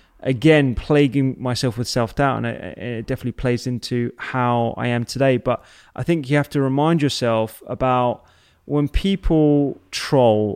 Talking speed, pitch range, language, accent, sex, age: 150 wpm, 120-145 Hz, English, British, male, 20-39